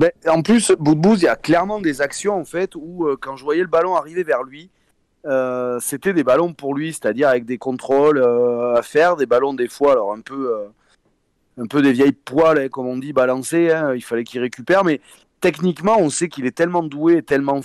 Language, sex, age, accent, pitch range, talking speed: French, male, 30-49, French, 125-165 Hz, 235 wpm